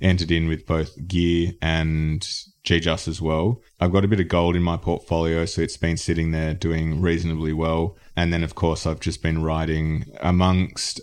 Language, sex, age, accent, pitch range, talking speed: English, male, 20-39, Australian, 80-90 Hz, 190 wpm